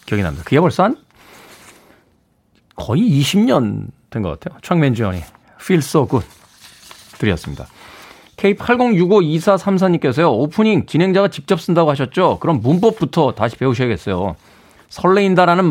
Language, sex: Korean, male